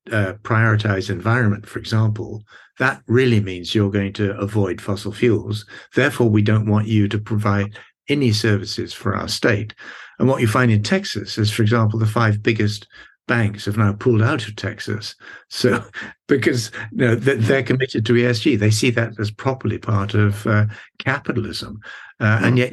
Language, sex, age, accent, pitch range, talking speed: English, male, 60-79, British, 105-120 Hz, 170 wpm